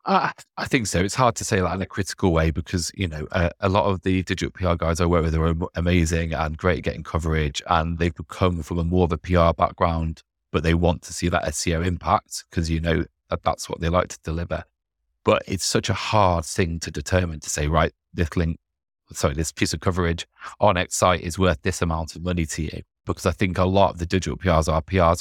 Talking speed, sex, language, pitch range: 245 wpm, male, English, 80-90 Hz